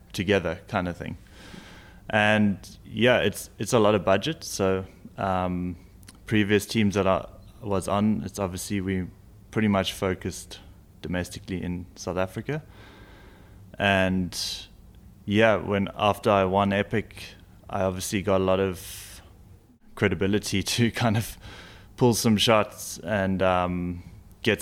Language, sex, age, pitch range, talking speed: English, male, 20-39, 95-105 Hz, 130 wpm